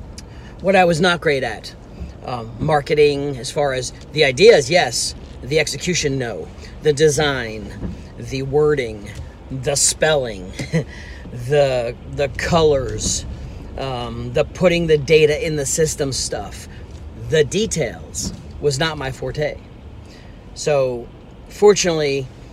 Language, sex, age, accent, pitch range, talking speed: English, male, 40-59, American, 115-145 Hz, 115 wpm